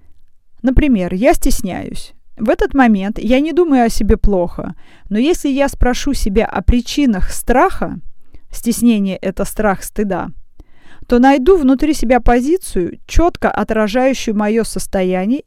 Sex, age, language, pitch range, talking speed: female, 20-39, Russian, 200-260 Hz, 130 wpm